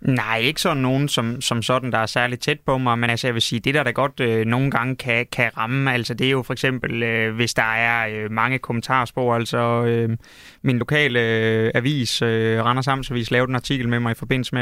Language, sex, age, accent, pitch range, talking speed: Danish, male, 20-39, native, 120-135 Hz, 240 wpm